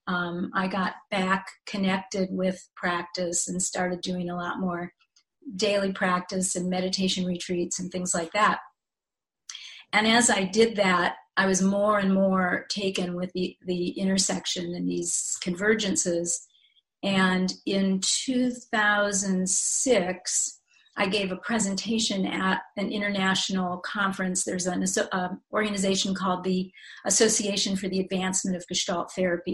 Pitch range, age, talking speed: 185-215 Hz, 40-59, 130 wpm